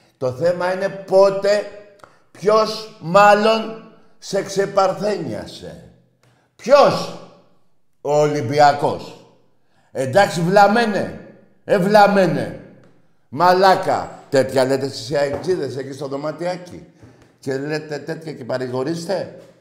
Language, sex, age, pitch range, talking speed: Greek, male, 50-69, 135-180 Hz, 80 wpm